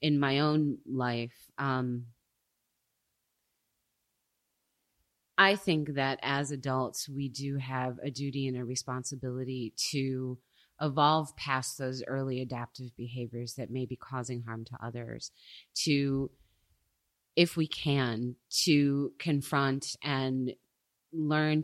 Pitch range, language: 125-145 Hz, English